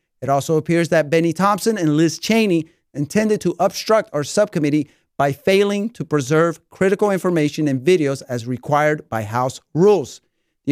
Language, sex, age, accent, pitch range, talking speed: English, male, 40-59, American, 150-190 Hz, 155 wpm